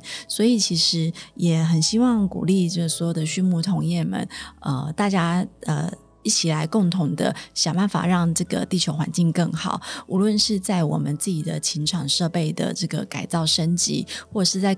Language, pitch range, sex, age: Chinese, 165-190 Hz, female, 30-49